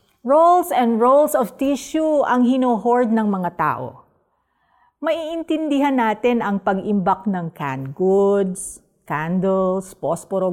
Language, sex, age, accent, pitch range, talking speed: Filipino, female, 50-69, native, 165-250 Hz, 110 wpm